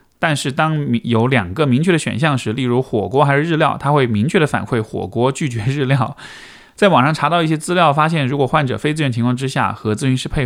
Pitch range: 115-150 Hz